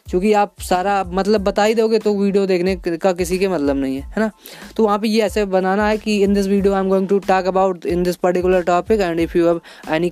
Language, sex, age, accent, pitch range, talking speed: Hindi, female, 20-39, native, 180-210 Hz, 255 wpm